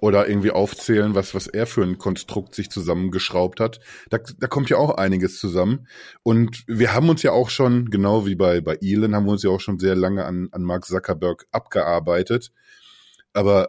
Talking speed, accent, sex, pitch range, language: 195 wpm, German, male, 100-130 Hz, German